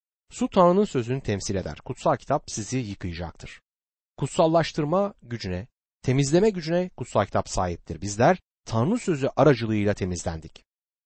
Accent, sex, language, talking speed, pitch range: native, male, Turkish, 115 wpm, 105-170 Hz